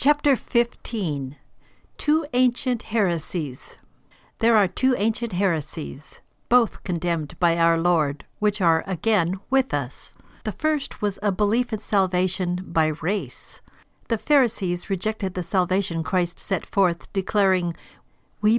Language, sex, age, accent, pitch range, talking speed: English, female, 60-79, American, 170-215 Hz, 125 wpm